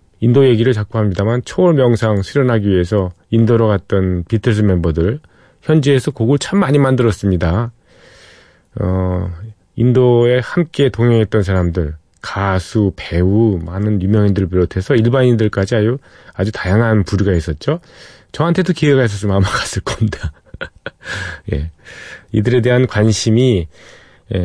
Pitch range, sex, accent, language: 95-125 Hz, male, native, Korean